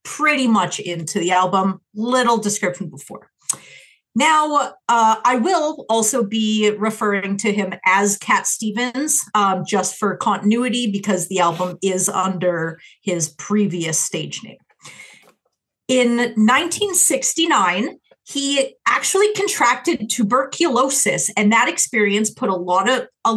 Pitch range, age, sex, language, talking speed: 190-255 Hz, 40-59, female, English, 115 wpm